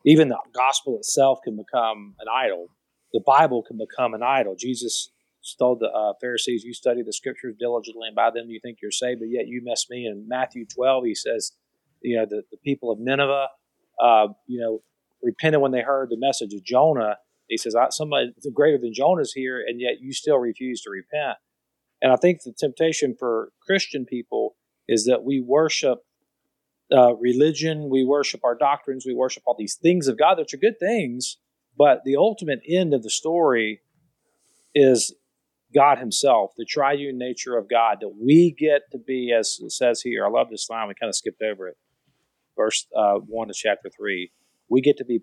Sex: male